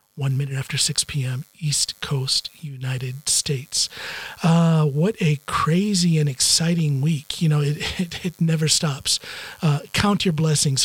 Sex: male